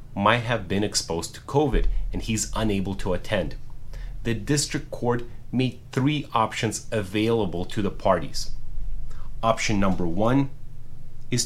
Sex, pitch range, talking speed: male, 105-130 Hz, 130 wpm